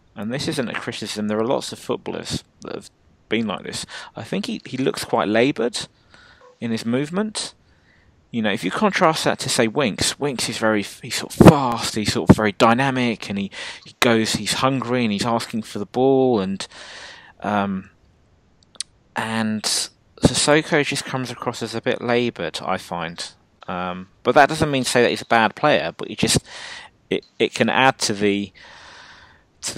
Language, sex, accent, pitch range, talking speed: English, male, British, 100-120 Hz, 185 wpm